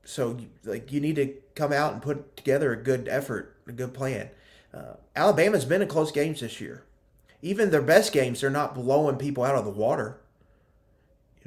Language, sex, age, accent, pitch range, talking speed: English, male, 30-49, American, 115-140 Hz, 195 wpm